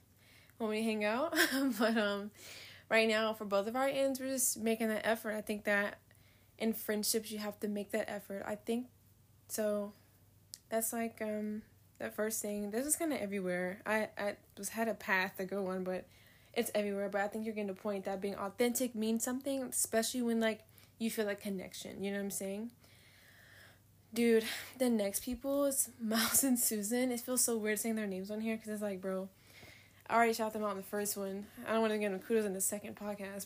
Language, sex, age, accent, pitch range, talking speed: English, female, 10-29, American, 200-235 Hz, 215 wpm